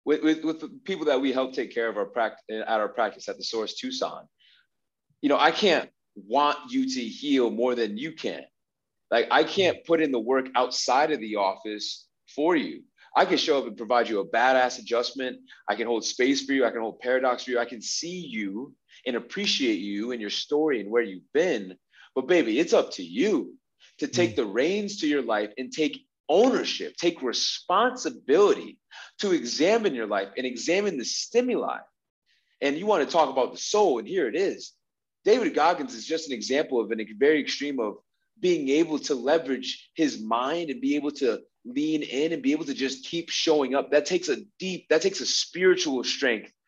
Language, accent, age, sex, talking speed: English, American, 30-49, male, 205 wpm